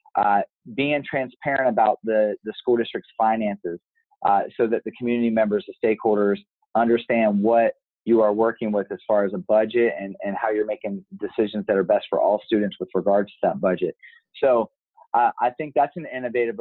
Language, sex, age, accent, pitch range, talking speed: English, male, 30-49, American, 105-125 Hz, 190 wpm